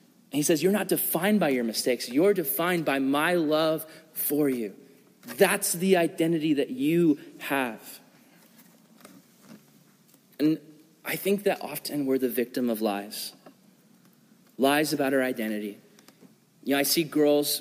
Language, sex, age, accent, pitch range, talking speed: English, male, 30-49, American, 145-180 Hz, 135 wpm